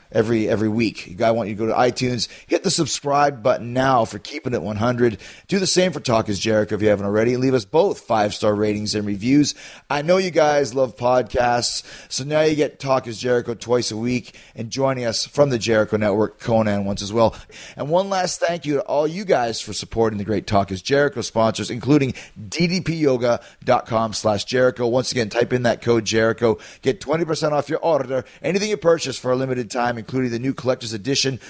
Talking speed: 210 wpm